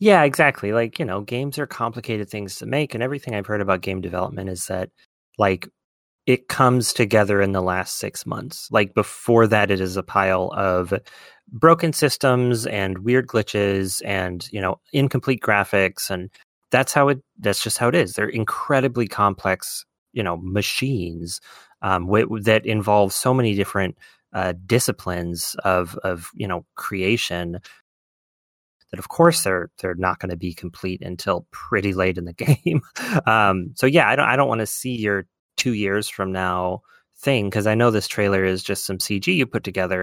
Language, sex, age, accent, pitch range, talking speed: English, male, 30-49, American, 95-125 Hz, 180 wpm